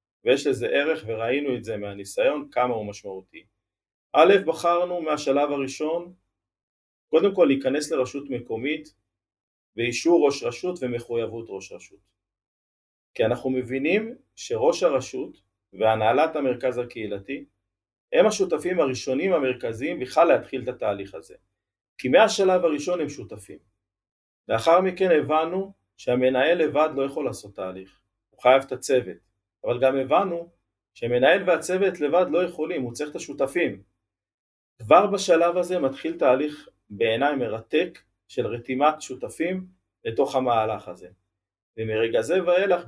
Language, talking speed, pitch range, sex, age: Hebrew, 125 wpm, 110-170 Hz, male, 50-69